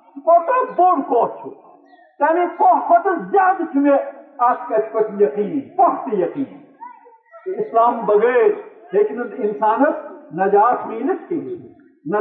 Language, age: Urdu, 50-69